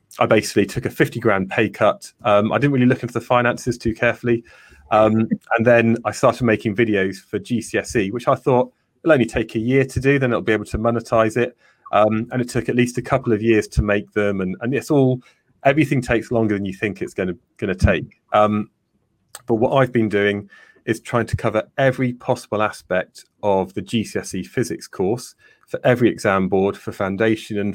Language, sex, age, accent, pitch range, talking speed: English, male, 30-49, British, 105-120 Hz, 210 wpm